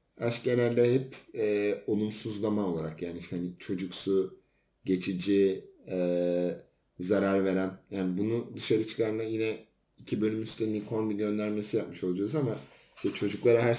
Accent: native